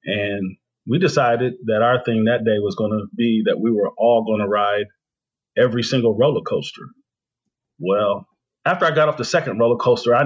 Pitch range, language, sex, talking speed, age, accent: 105-125 Hz, English, male, 195 wpm, 40-59, American